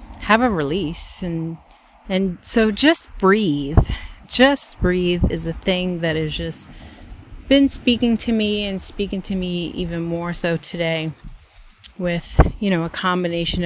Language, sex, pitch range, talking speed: English, female, 150-190 Hz, 145 wpm